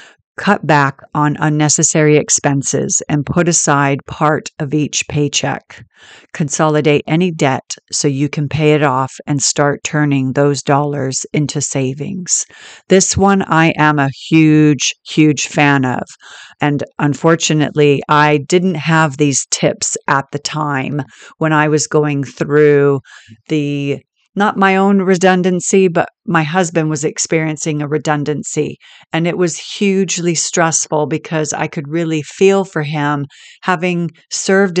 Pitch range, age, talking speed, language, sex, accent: 145-175 Hz, 50-69, 135 wpm, English, female, American